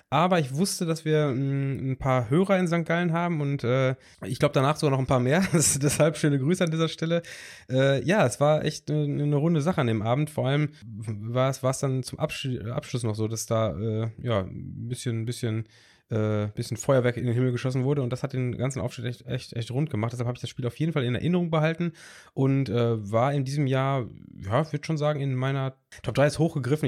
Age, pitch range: 20-39, 120-150 Hz